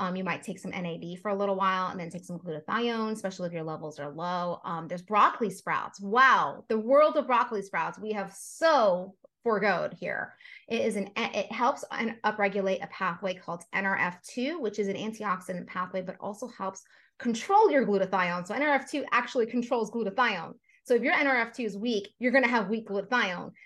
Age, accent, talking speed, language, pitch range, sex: 30-49, American, 190 wpm, English, 185-235 Hz, female